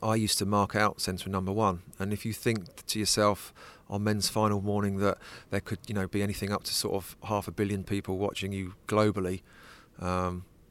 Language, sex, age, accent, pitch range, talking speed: English, male, 30-49, British, 95-105 Hz, 205 wpm